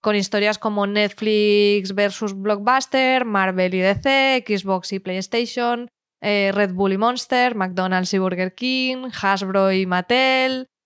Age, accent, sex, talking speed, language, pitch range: 20-39, Spanish, female, 135 wpm, Spanish, 195-235 Hz